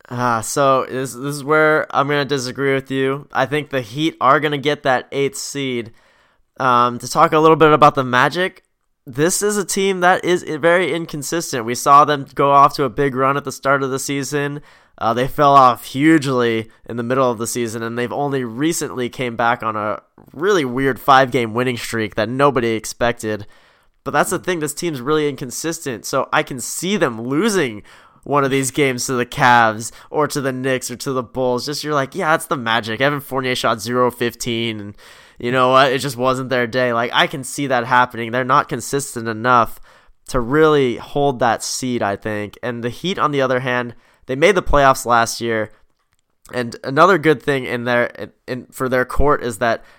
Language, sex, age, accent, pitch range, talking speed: English, male, 10-29, American, 120-145 Hz, 205 wpm